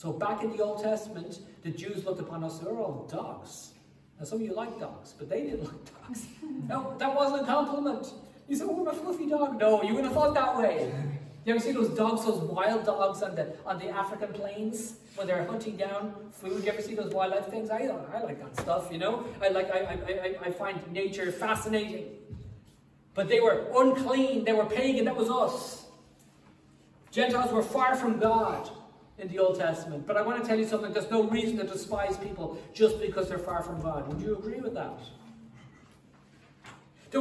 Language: English